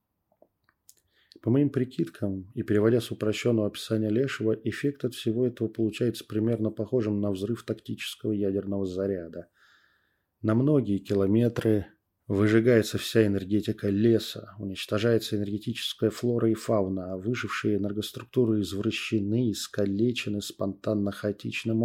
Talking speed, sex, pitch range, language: 105 wpm, male, 100-115 Hz, Russian